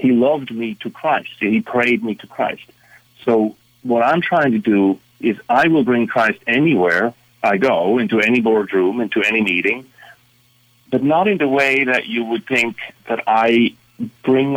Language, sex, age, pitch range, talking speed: English, male, 40-59, 110-125 Hz, 175 wpm